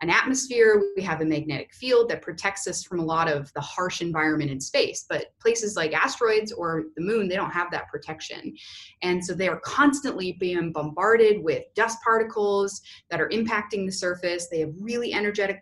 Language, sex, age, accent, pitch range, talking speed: English, female, 30-49, American, 170-215 Hz, 190 wpm